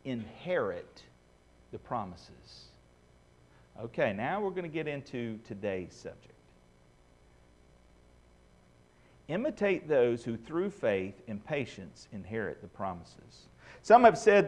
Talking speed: 100 wpm